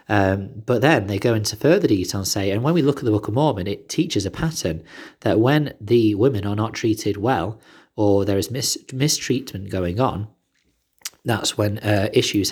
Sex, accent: male, British